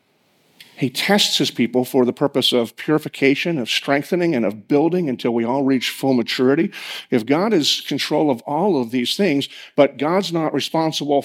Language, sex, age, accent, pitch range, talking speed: English, male, 50-69, American, 120-145 Hz, 175 wpm